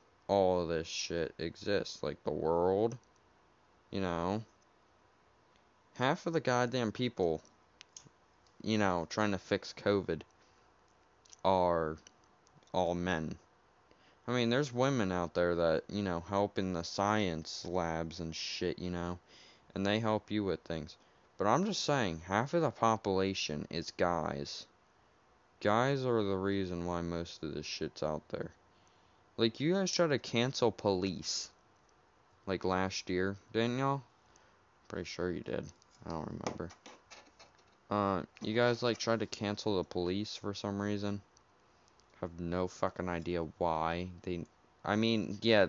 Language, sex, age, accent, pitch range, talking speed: English, male, 20-39, American, 85-110 Hz, 145 wpm